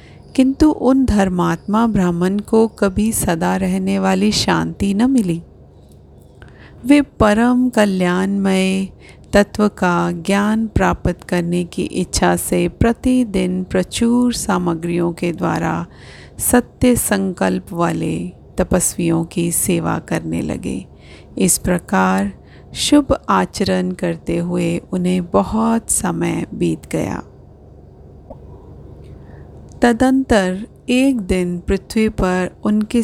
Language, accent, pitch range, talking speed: Hindi, native, 180-210 Hz, 95 wpm